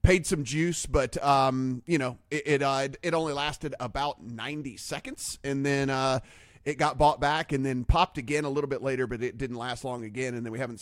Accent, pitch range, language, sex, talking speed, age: American, 130-160 Hz, English, male, 230 wpm, 30-49